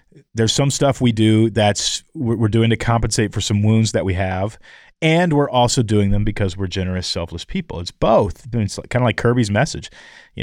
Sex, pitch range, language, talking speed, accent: male, 105-130 Hz, English, 200 wpm, American